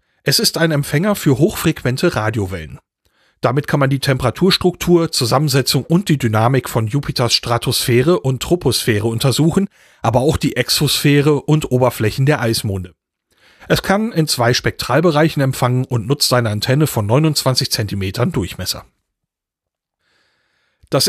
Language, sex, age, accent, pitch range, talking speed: German, male, 40-59, German, 120-160 Hz, 130 wpm